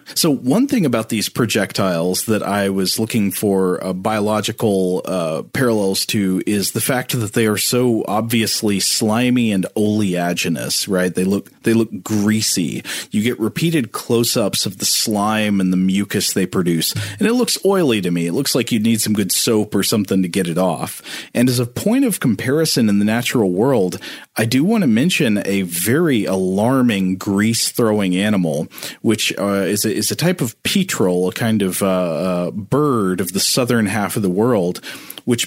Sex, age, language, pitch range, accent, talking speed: male, 30-49, English, 95-120 Hz, American, 185 wpm